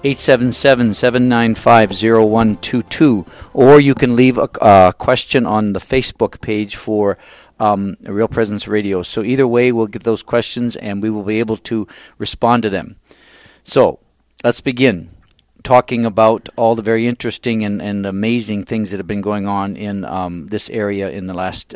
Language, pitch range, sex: English, 100-115 Hz, male